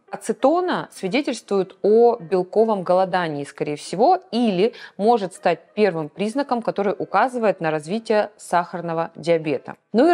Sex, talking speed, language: female, 120 wpm, Russian